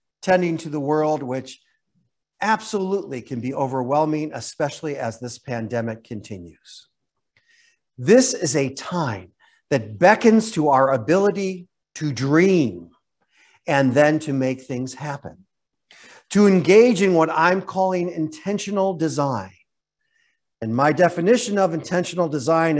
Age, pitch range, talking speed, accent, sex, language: 50-69, 135-200 Hz, 120 wpm, American, male, English